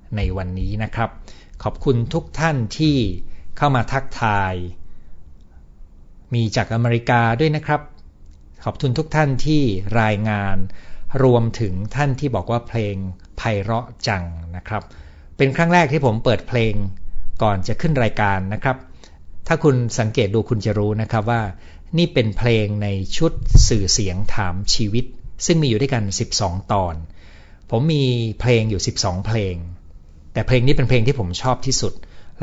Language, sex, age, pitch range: Thai, male, 60-79, 80-125 Hz